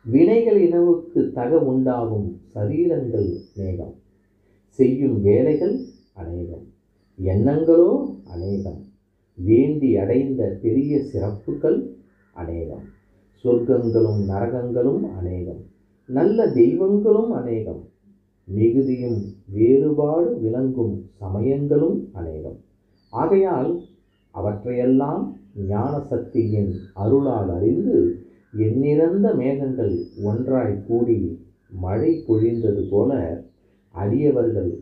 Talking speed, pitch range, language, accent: 65 wpm, 100-130 Hz, Tamil, native